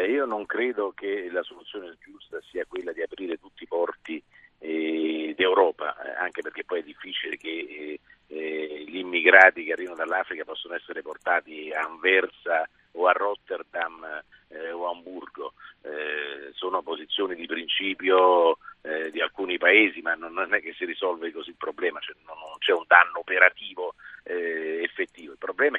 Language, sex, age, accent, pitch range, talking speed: Italian, male, 50-69, native, 320-460 Hz, 160 wpm